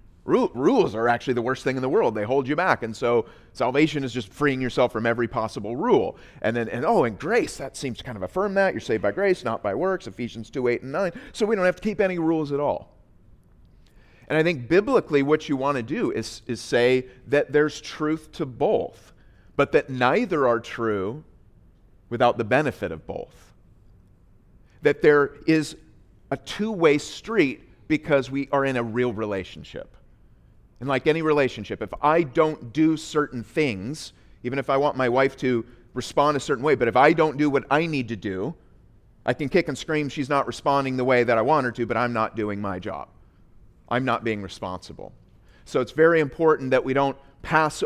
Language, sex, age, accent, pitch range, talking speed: English, male, 30-49, American, 120-155 Hz, 205 wpm